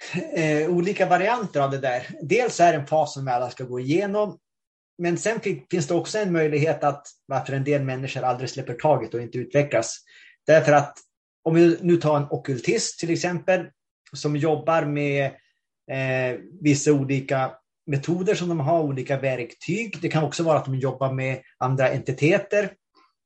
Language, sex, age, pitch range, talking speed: Swedish, male, 30-49, 135-170 Hz, 175 wpm